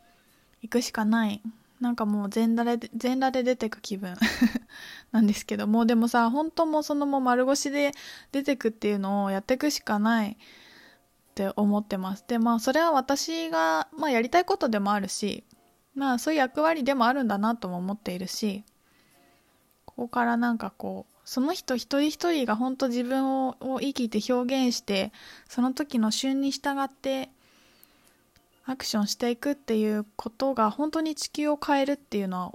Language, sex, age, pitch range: Japanese, female, 20-39, 210-275 Hz